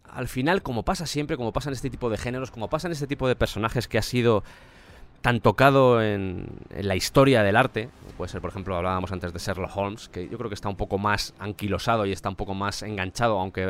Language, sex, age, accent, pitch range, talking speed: Spanish, male, 20-39, Spanish, 95-125 Hz, 240 wpm